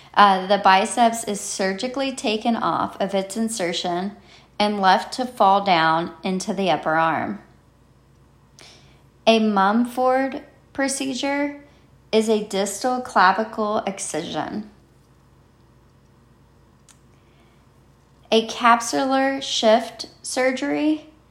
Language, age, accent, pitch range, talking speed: English, 30-49, American, 195-245 Hz, 85 wpm